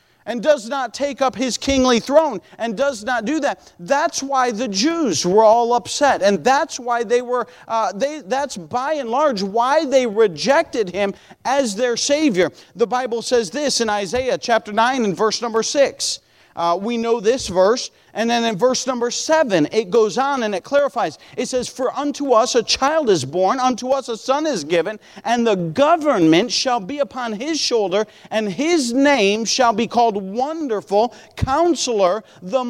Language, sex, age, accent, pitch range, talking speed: English, male, 40-59, American, 215-280 Hz, 180 wpm